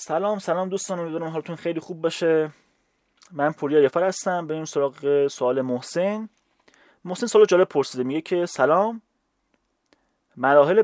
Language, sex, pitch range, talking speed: Persian, male, 125-170 Hz, 140 wpm